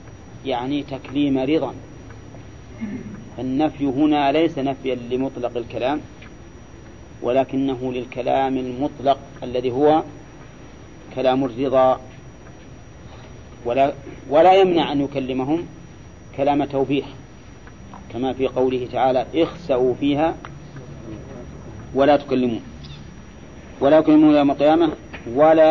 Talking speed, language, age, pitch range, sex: 85 wpm, English, 40-59, 125-150 Hz, male